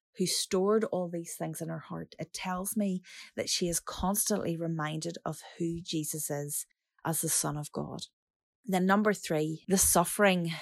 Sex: female